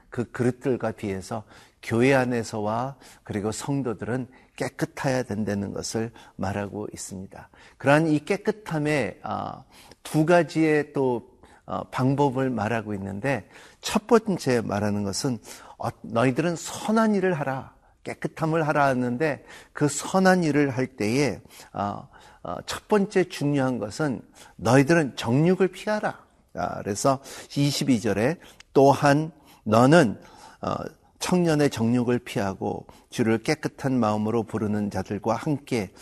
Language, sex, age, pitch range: Korean, male, 50-69, 115-155 Hz